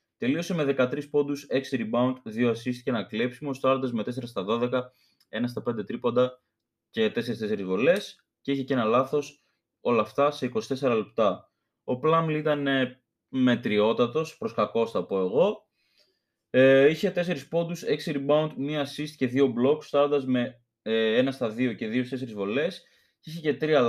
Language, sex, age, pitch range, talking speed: Greek, male, 20-39, 120-150 Hz, 170 wpm